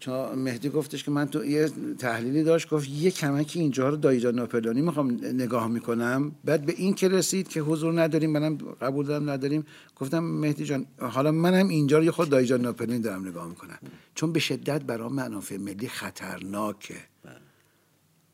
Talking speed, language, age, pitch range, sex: 170 wpm, Persian, 60-79, 125-160 Hz, male